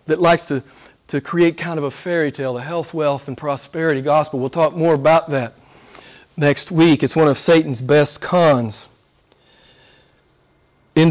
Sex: male